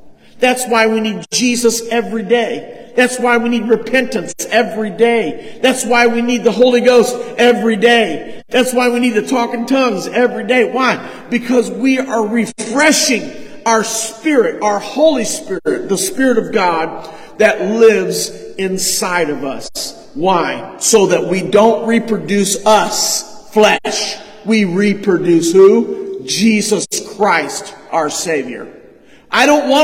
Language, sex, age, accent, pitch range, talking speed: English, male, 50-69, American, 210-245 Hz, 140 wpm